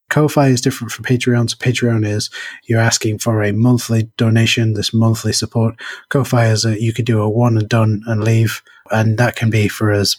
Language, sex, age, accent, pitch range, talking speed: English, male, 20-39, British, 110-125 Hz, 200 wpm